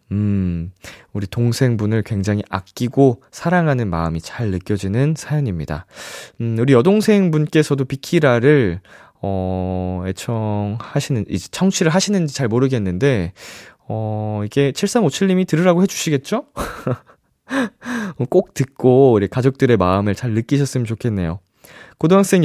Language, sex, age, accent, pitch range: Korean, male, 20-39, native, 105-160 Hz